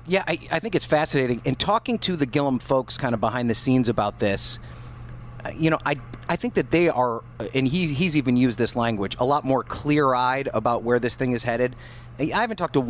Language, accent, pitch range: English, American, 120-155 Hz